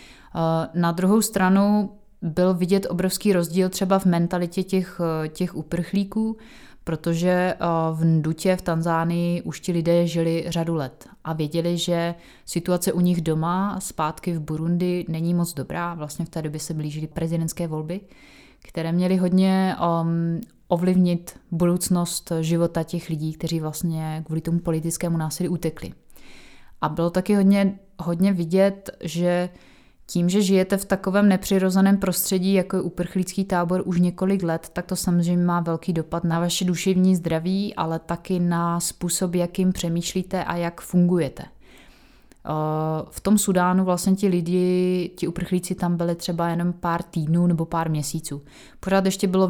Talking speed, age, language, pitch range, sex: 145 wpm, 20-39, Czech, 165-185 Hz, female